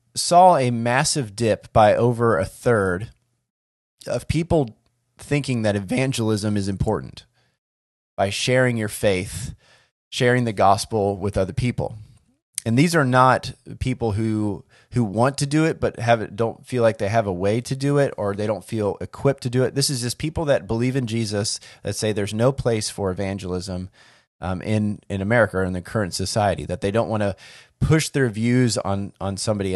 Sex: male